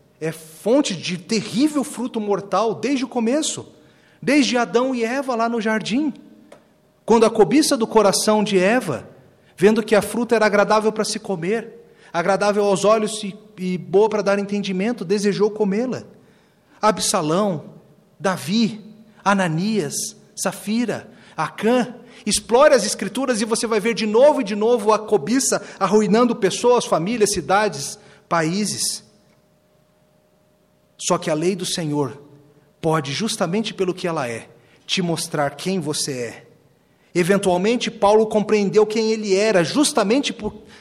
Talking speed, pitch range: 135 wpm, 175-225 Hz